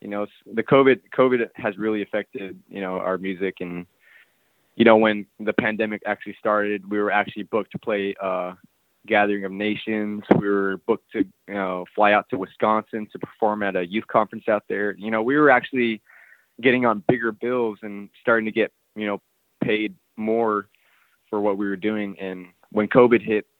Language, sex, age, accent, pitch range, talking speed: English, male, 20-39, American, 100-110 Hz, 190 wpm